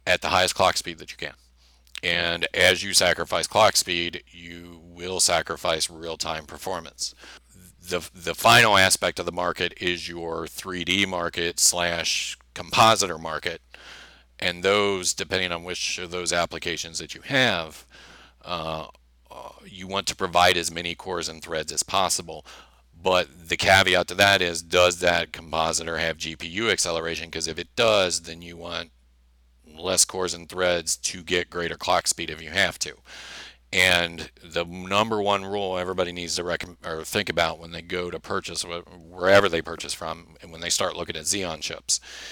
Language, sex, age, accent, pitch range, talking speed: English, male, 40-59, American, 80-90 Hz, 165 wpm